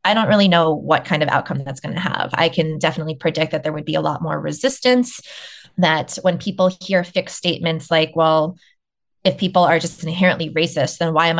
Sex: female